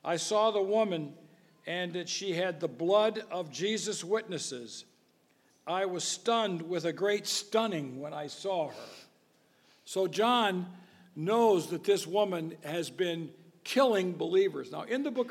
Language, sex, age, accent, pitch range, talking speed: English, male, 60-79, American, 155-210 Hz, 150 wpm